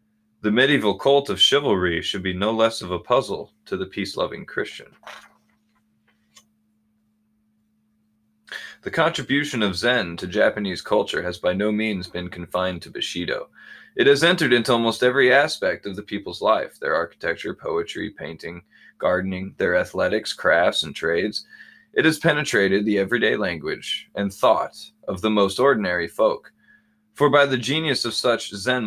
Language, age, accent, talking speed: English, 20-39, American, 150 wpm